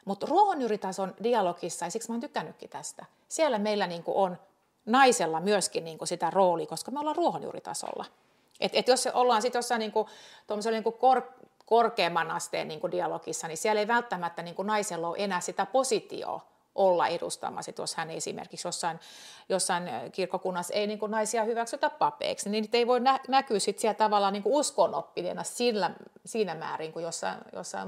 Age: 30-49